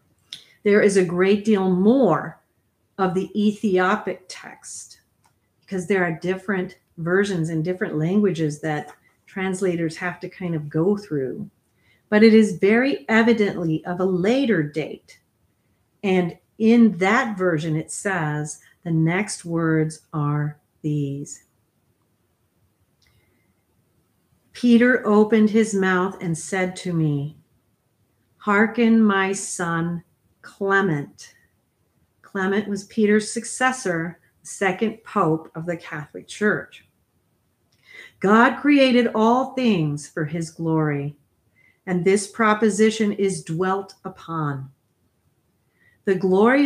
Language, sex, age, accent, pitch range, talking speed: English, female, 40-59, American, 155-210 Hz, 105 wpm